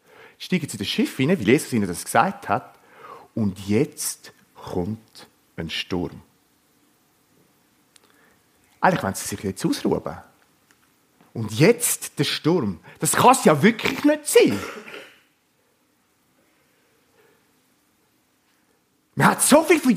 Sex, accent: male, German